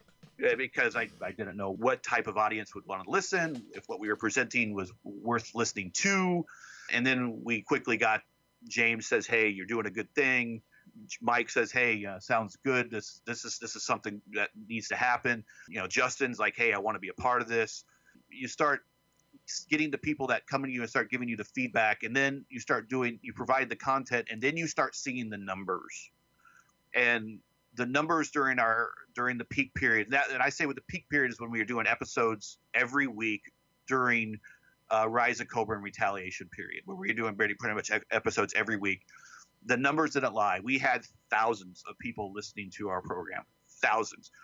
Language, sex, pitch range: English, male, 110-135 Hz